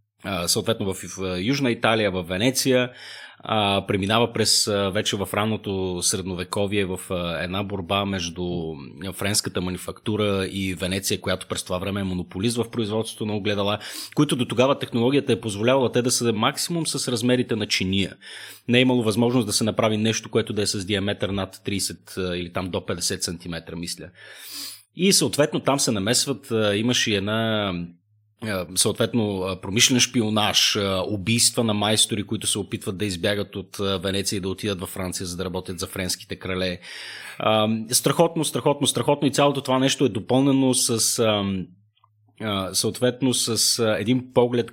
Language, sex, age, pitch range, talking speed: Bulgarian, male, 30-49, 95-120 Hz, 150 wpm